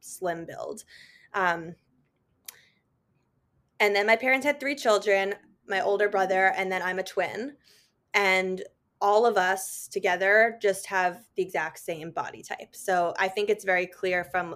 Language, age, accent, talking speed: English, 10-29, American, 155 wpm